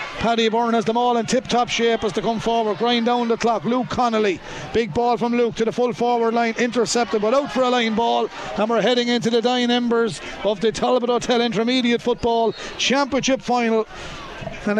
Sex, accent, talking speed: male, Irish, 205 wpm